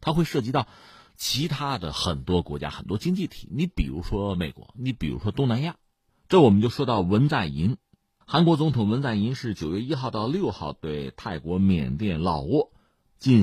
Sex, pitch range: male, 95-140 Hz